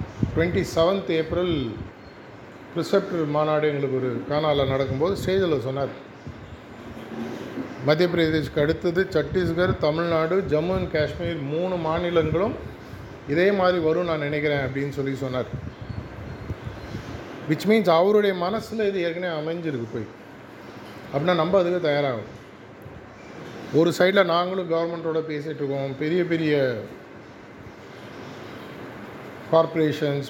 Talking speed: 100 wpm